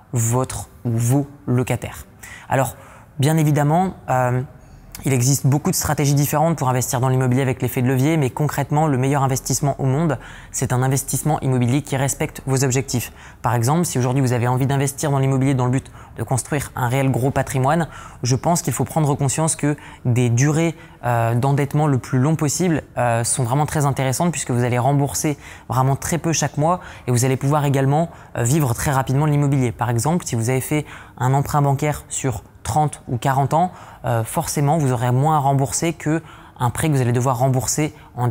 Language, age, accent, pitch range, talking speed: French, 20-39, French, 125-150 Hz, 190 wpm